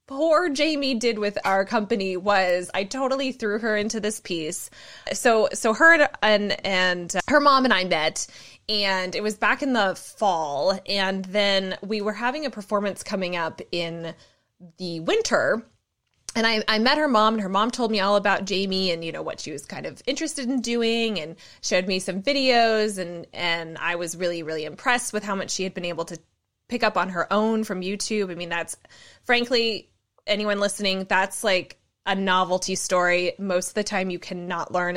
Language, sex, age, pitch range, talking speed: English, female, 20-39, 185-235 Hz, 195 wpm